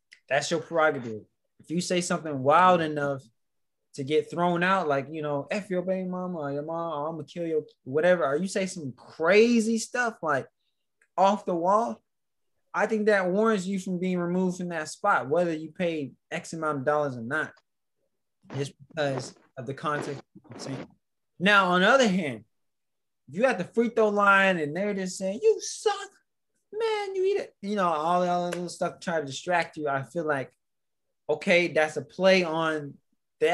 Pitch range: 145-185 Hz